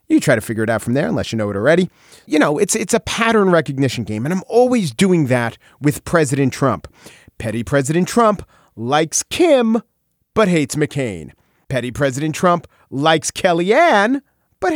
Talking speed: 175 wpm